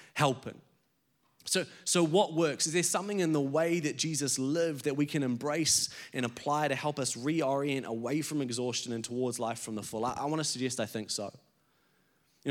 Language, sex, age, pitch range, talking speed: English, male, 20-39, 135-170 Hz, 200 wpm